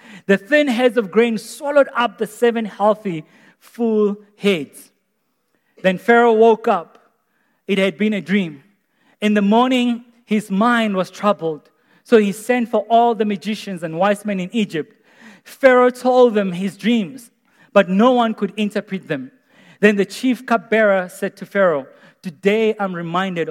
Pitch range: 195-235 Hz